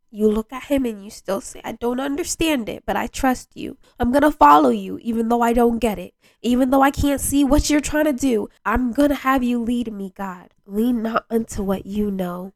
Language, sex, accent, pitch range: English, female, American, 195-245 Hz